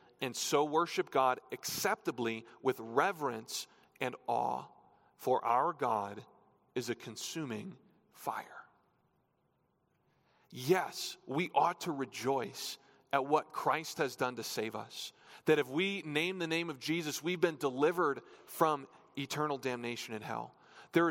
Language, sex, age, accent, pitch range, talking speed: English, male, 40-59, American, 130-170 Hz, 130 wpm